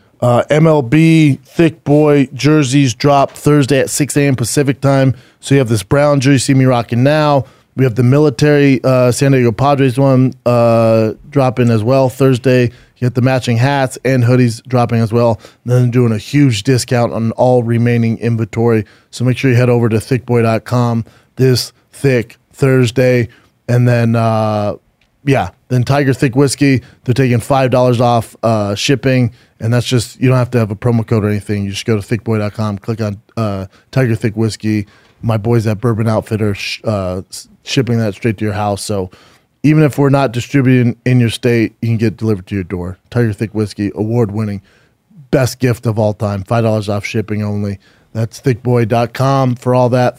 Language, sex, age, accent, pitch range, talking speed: English, male, 20-39, American, 110-130 Hz, 180 wpm